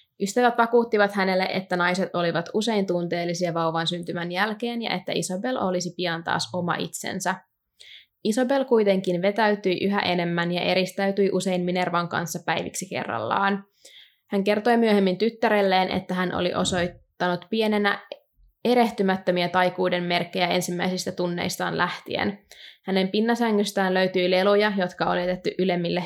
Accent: native